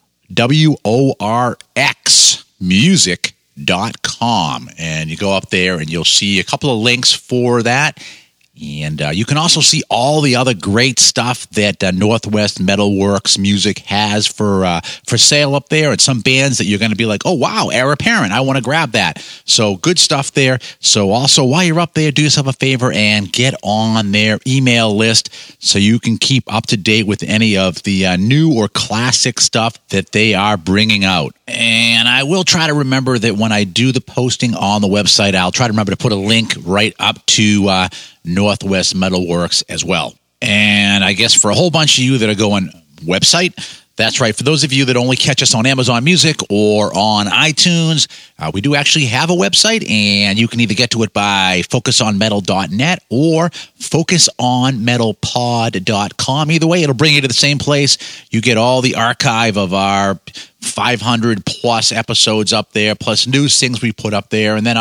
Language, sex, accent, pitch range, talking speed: English, male, American, 105-135 Hz, 190 wpm